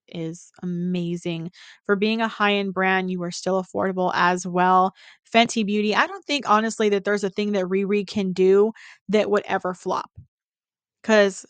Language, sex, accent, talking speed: English, female, American, 170 wpm